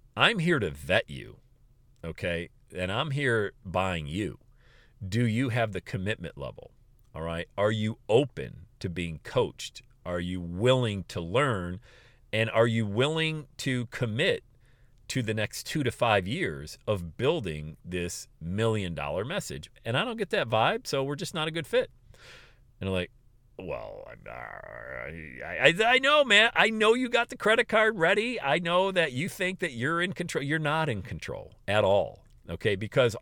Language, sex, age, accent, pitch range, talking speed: English, male, 40-59, American, 100-140 Hz, 170 wpm